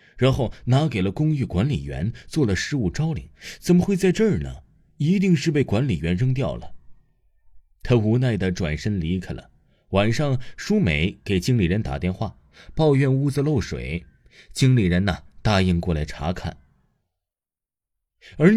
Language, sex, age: Chinese, male, 20-39